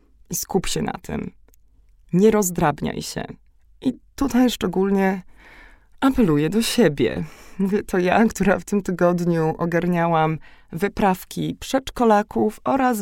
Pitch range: 165-215 Hz